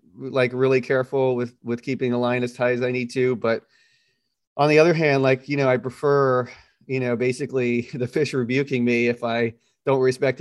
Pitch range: 115-135 Hz